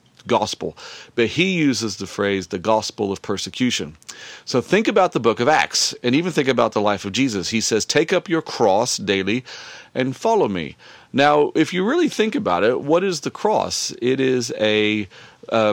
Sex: male